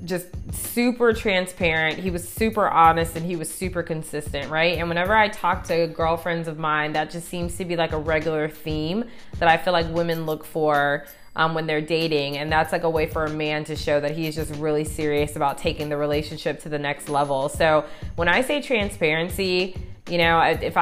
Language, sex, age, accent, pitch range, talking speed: English, female, 20-39, American, 155-185 Hz, 210 wpm